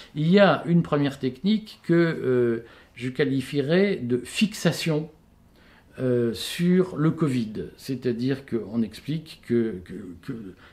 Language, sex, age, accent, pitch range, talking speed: French, male, 50-69, French, 120-170 Hz, 135 wpm